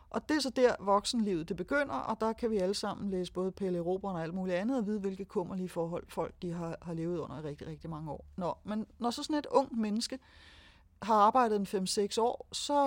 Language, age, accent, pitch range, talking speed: Danish, 30-49, native, 185-245 Hz, 245 wpm